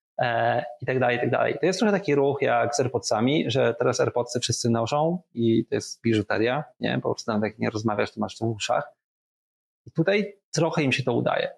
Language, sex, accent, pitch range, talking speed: Polish, male, native, 115-140 Hz, 220 wpm